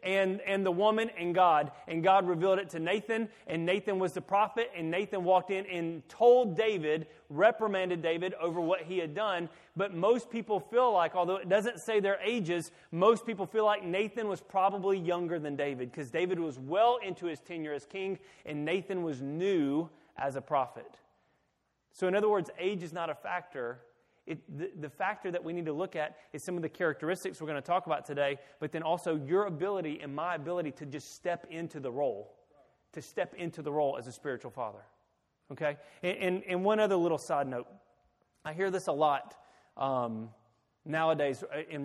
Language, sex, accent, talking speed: English, male, American, 195 wpm